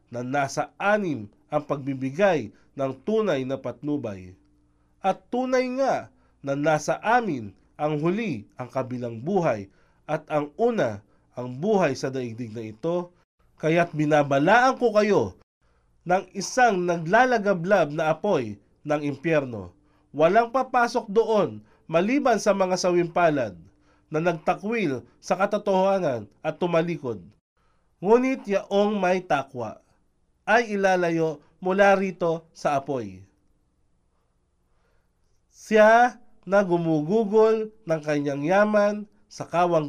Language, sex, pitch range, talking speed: English, male, 130-205 Hz, 105 wpm